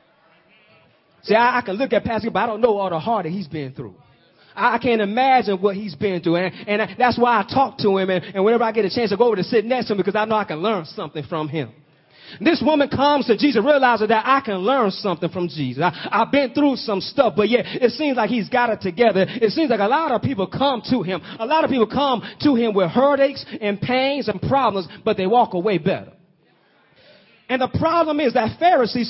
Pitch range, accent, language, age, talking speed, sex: 190-250 Hz, American, English, 30-49, 250 wpm, male